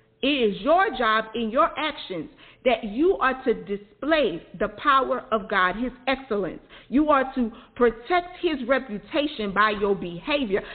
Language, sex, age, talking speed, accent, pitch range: English, female, 40-59, 150 wpm, American, 200-260 Hz